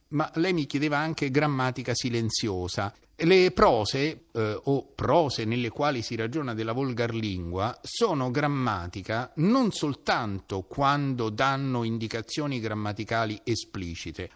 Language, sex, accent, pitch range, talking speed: Italian, male, native, 110-175 Hz, 115 wpm